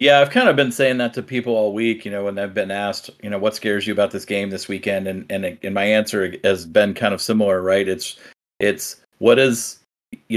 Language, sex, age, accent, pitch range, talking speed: English, male, 40-59, American, 100-115 Hz, 250 wpm